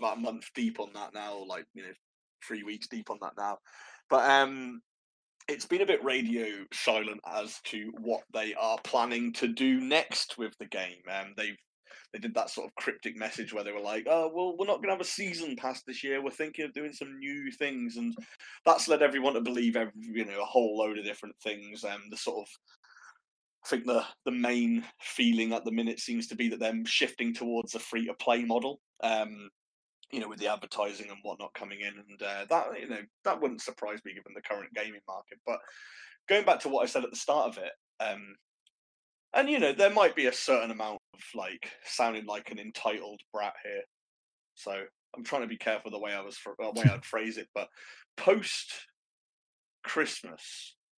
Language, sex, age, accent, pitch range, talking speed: English, male, 30-49, British, 110-150 Hz, 210 wpm